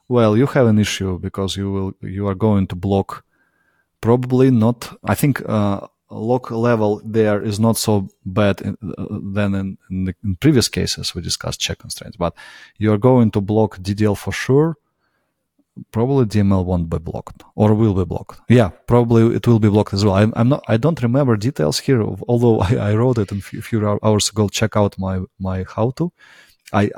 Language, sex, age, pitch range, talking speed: English, male, 20-39, 95-115 Hz, 200 wpm